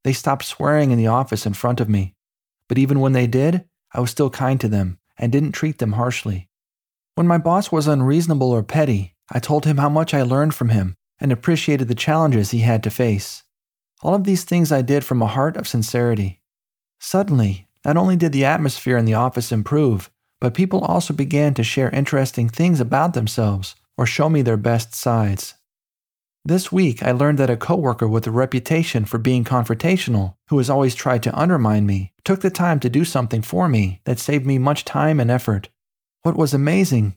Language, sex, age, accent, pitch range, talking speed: English, male, 40-59, American, 115-145 Hz, 200 wpm